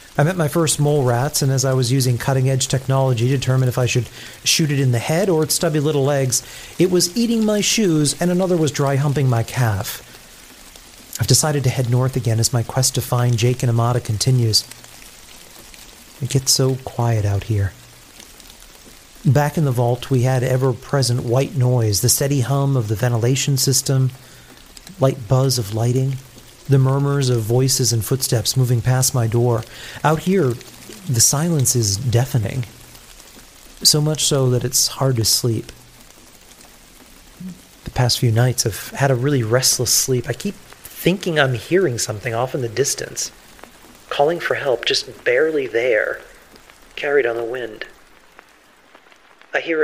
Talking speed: 165 wpm